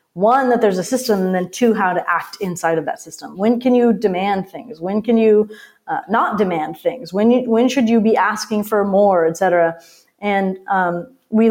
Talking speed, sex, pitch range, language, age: 215 wpm, female, 175-220 Hz, English, 30-49